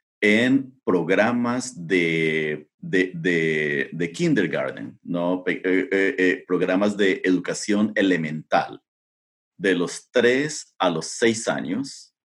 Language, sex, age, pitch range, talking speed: Spanish, male, 40-59, 80-130 Hz, 105 wpm